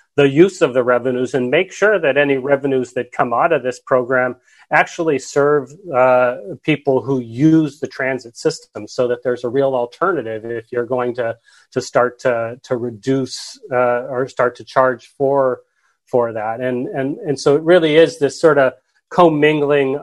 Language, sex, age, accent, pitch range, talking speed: English, male, 30-49, American, 120-140 Hz, 180 wpm